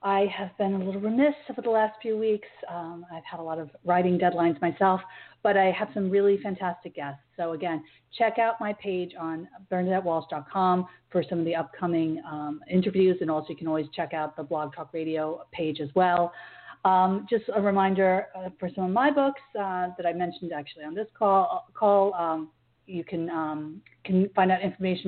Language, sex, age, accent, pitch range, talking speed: English, female, 40-59, American, 160-205 Hz, 200 wpm